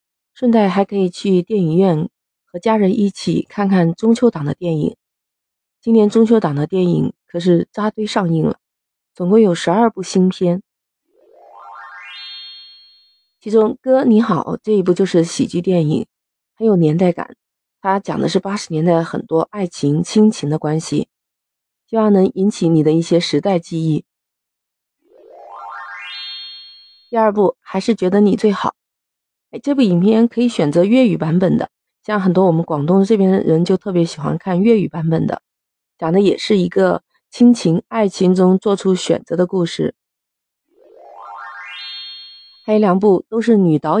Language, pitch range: Chinese, 170-220 Hz